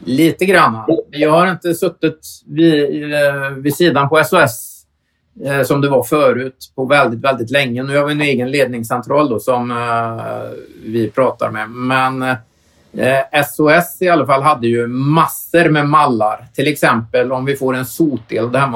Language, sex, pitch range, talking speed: Swedish, male, 115-145 Hz, 165 wpm